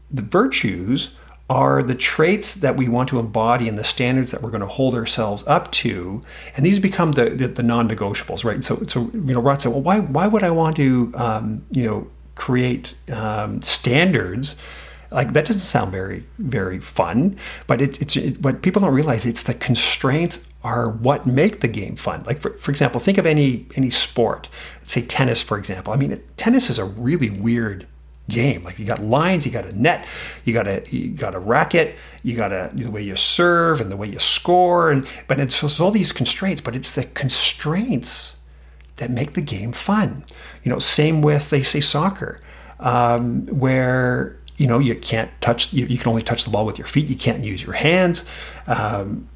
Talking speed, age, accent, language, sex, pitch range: 200 wpm, 40-59, American, English, male, 110-150 Hz